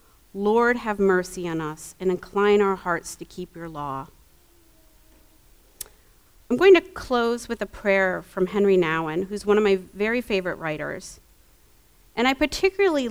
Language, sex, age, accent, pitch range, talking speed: English, female, 40-59, American, 170-225 Hz, 150 wpm